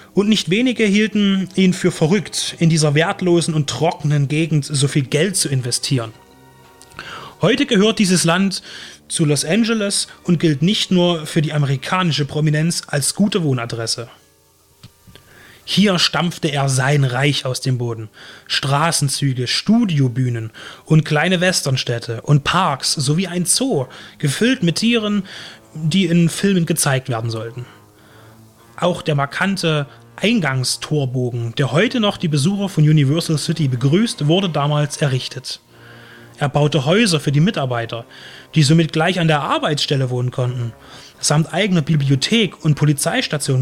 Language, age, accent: German, 30-49, German